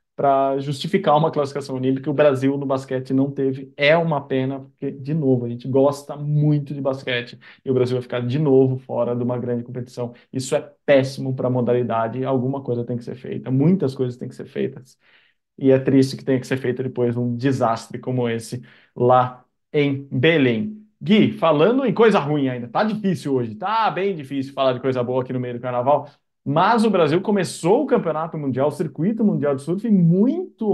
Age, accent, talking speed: 20-39, Brazilian, 205 wpm